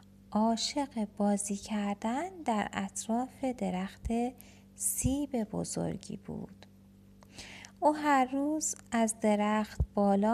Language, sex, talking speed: Persian, female, 85 wpm